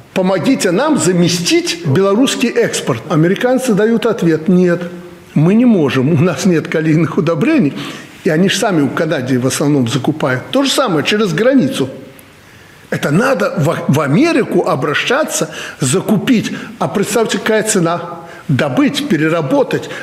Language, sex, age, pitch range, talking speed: Russian, male, 60-79, 155-210 Hz, 130 wpm